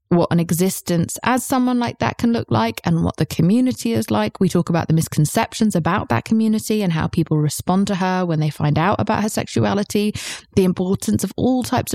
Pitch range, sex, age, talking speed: 155-190 Hz, female, 20-39, 210 wpm